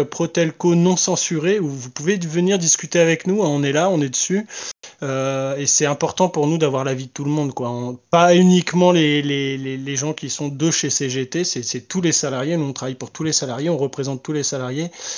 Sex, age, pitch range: male, 20-39, 140-165 Hz